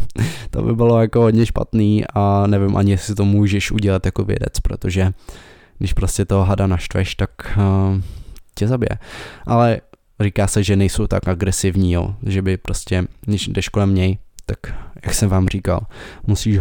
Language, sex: Czech, male